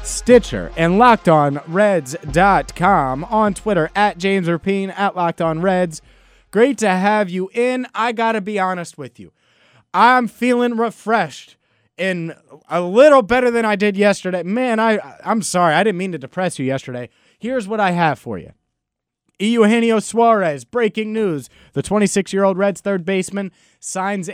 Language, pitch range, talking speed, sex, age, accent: English, 145-210 Hz, 155 wpm, male, 30-49, American